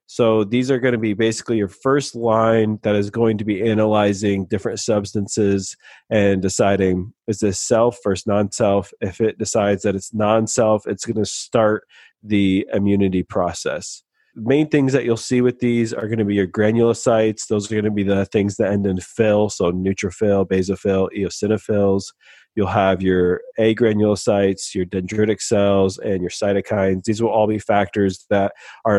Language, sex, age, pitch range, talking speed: English, male, 30-49, 100-115 Hz, 175 wpm